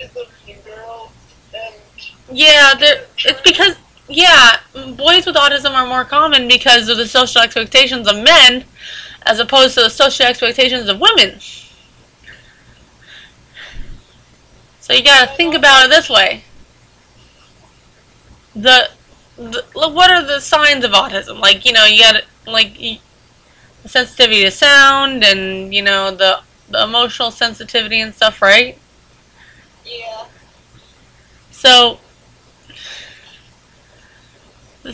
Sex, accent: female, American